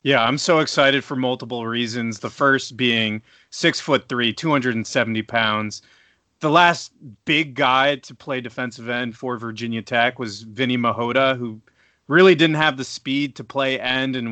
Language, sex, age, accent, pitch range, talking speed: English, male, 30-49, American, 120-140 Hz, 165 wpm